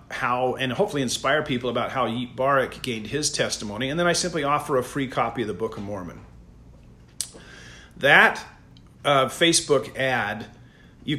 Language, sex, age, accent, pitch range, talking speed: English, male, 40-59, American, 115-145 Hz, 160 wpm